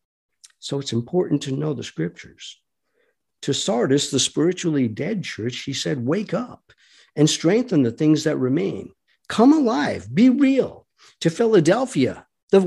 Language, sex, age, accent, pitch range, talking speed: English, male, 50-69, American, 125-170 Hz, 140 wpm